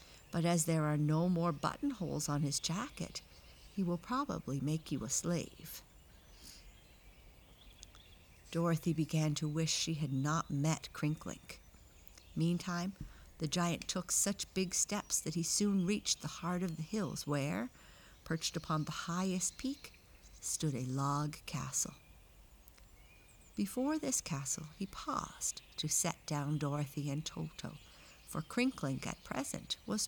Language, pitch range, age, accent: English, 145-185 Hz, 60-79, American